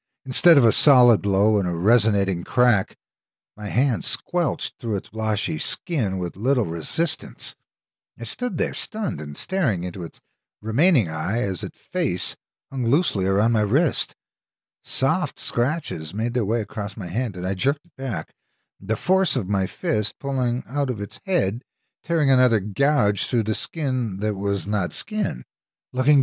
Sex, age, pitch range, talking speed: male, 50-69, 100-140 Hz, 160 wpm